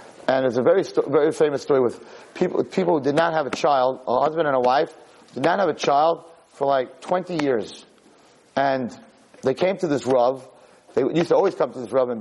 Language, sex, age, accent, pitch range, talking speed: English, male, 40-59, American, 130-190 Hz, 225 wpm